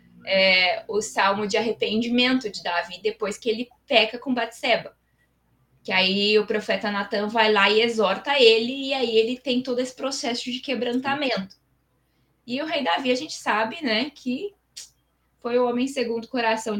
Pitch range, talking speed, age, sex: 220-255 Hz, 170 wpm, 20-39, female